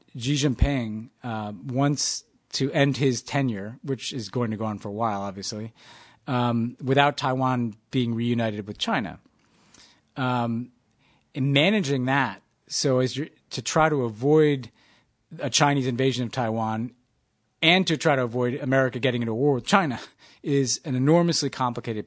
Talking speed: 150 wpm